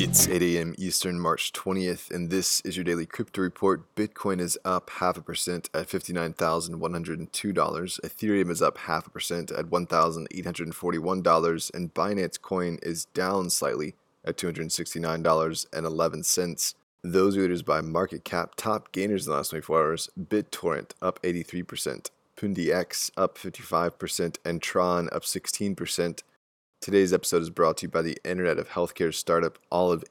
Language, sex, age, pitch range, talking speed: English, male, 20-39, 85-95 Hz, 145 wpm